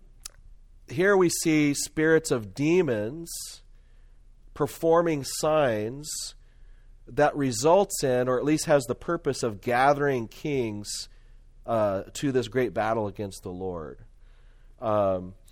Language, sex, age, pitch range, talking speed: English, male, 40-59, 105-140 Hz, 110 wpm